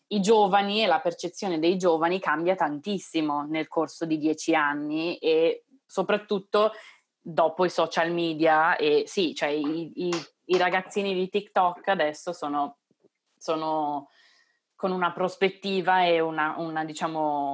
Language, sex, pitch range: Italian, female, 155-185 Hz